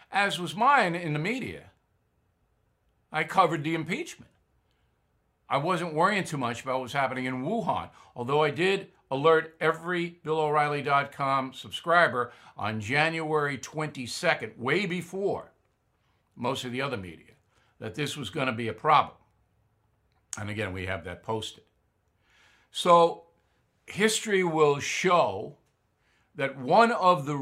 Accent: American